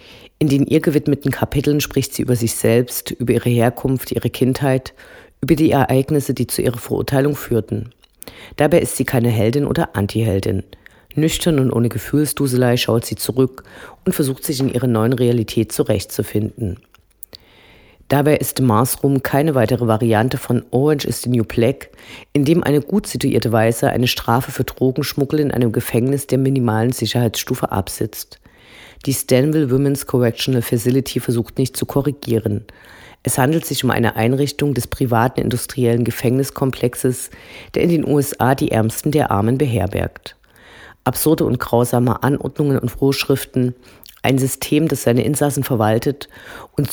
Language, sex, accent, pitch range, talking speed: German, female, German, 115-140 Hz, 150 wpm